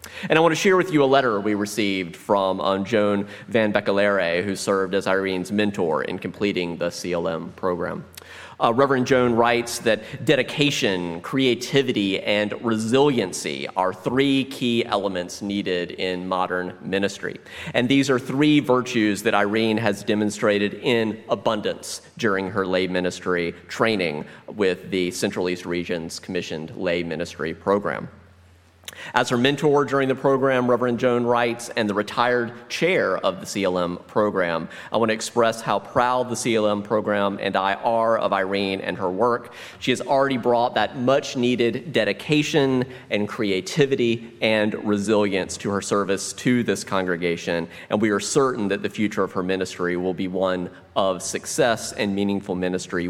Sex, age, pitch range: male, 30-49, 95-120 Hz